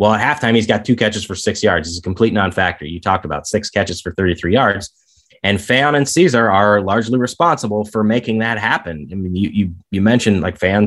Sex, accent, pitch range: male, American, 90-115 Hz